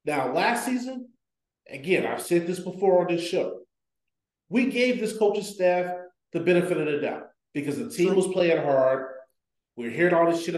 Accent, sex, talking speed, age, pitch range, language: American, male, 185 wpm, 30-49, 150-195 Hz, English